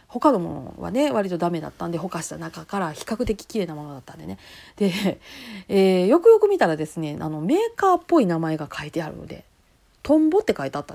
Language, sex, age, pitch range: Japanese, female, 40-59, 170-280 Hz